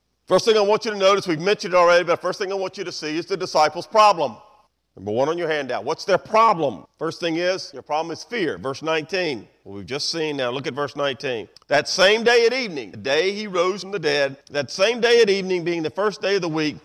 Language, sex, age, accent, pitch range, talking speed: English, male, 40-59, American, 150-195 Hz, 260 wpm